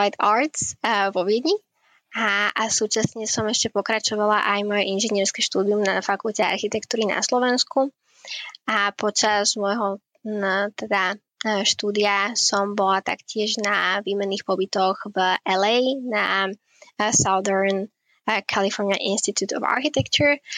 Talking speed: 105 wpm